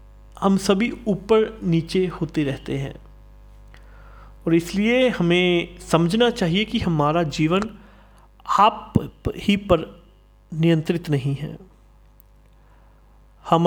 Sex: male